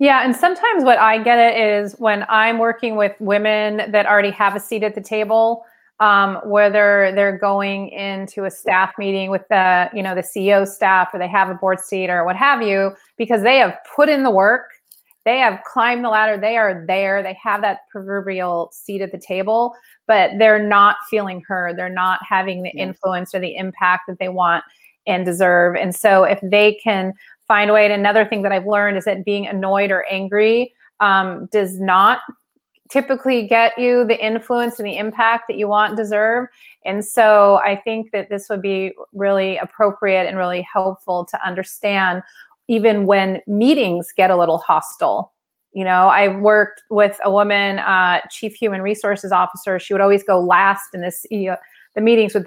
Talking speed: 190 wpm